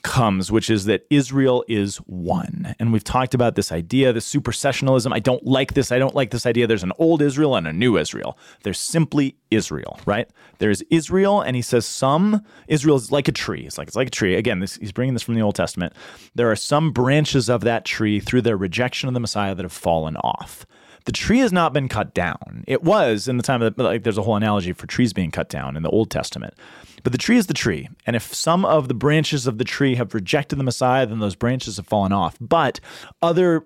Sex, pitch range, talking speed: male, 110-140 Hz, 235 wpm